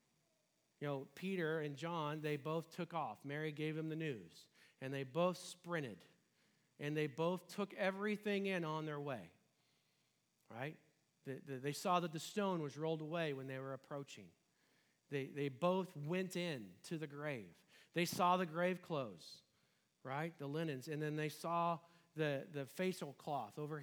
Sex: male